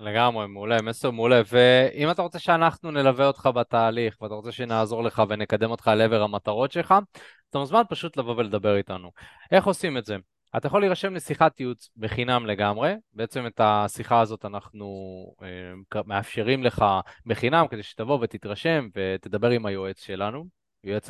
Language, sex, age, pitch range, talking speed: Hebrew, male, 20-39, 105-140 Hz, 155 wpm